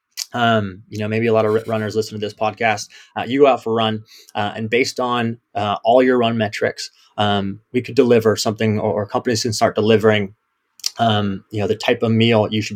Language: English